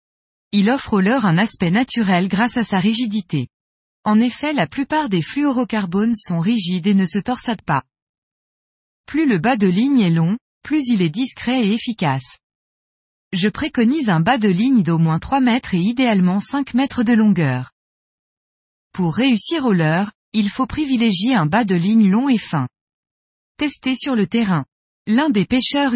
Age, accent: 20-39, French